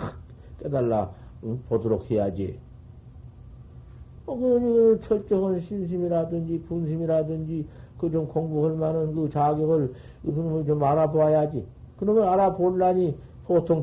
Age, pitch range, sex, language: 50-69, 115-145 Hz, male, Korean